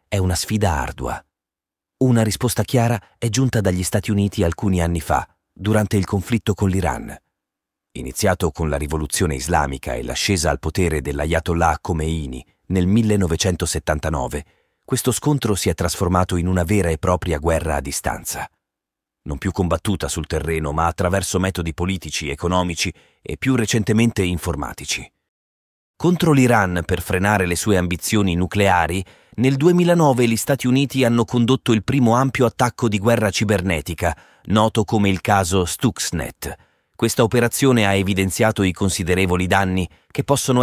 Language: Italian